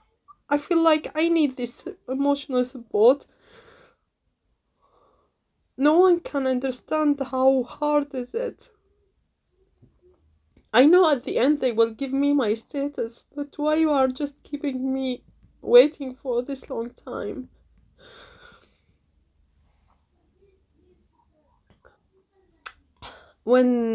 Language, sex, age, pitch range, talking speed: English, female, 20-39, 215-300 Hz, 105 wpm